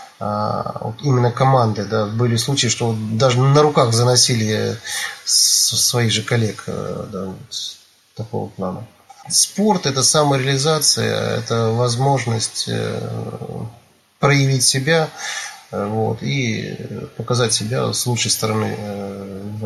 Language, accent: Russian, native